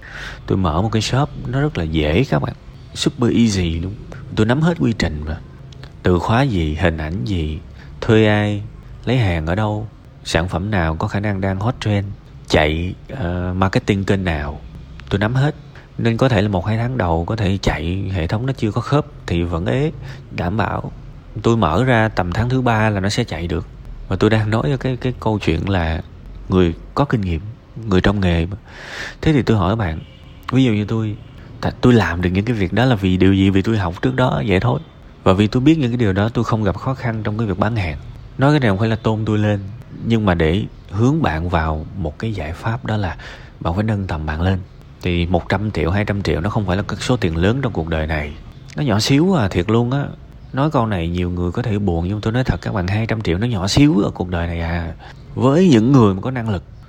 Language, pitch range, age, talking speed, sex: Vietnamese, 90-125 Hz, 20-39, 240 wpm, male